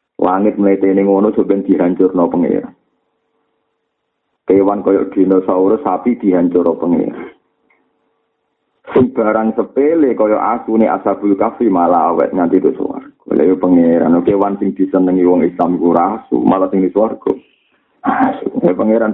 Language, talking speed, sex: Indonesian, 125 wpm, male